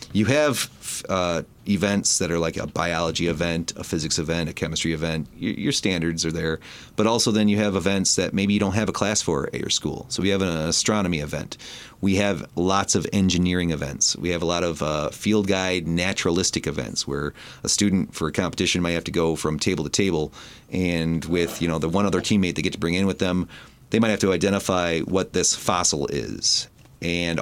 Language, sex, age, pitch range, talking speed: English, male, 30-49, 85-100 Hz, 215 wpm